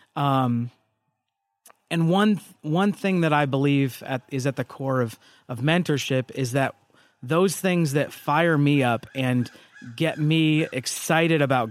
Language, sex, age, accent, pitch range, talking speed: English, male, 30-49, American, 135-170 Hz, 145 wpm